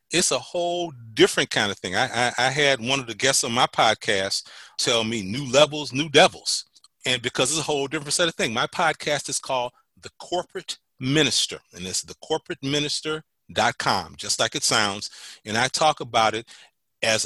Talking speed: 190 wpm